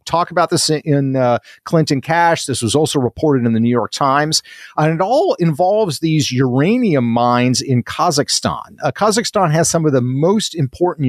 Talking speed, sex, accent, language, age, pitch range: 180 wpm, male, American, English, 50-69, 125-170 Hz